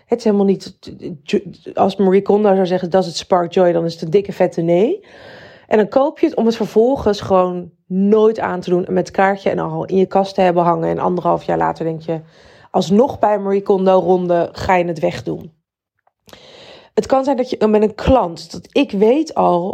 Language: Dutch